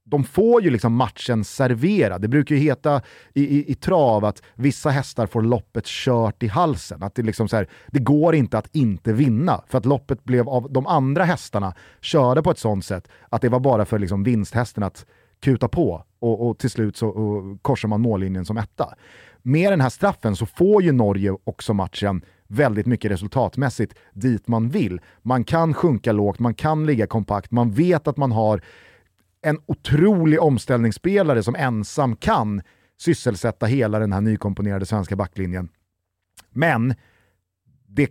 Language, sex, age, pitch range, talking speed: Swedish, male, 30-49, 105-140 Hz, 175 wpm